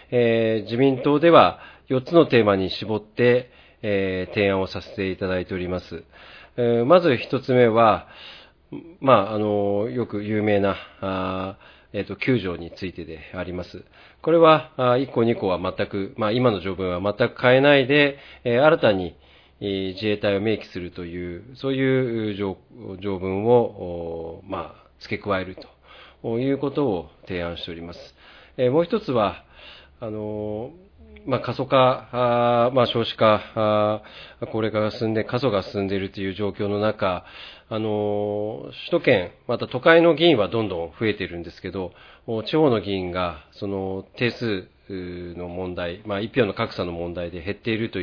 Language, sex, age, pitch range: Japanese, male, 40-59, 95-120 Hz